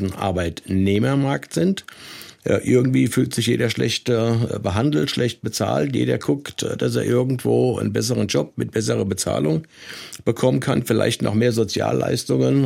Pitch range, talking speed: 100-125 Hz, 130 wpm